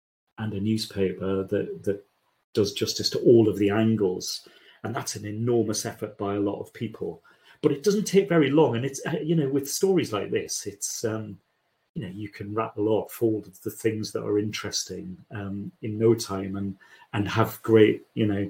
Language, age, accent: English, 40-59, British